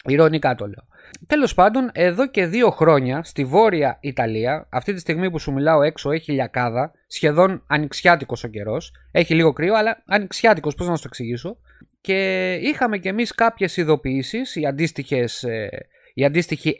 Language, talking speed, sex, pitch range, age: Greek, 145 wpm, male, 130-200 Hz, 30-49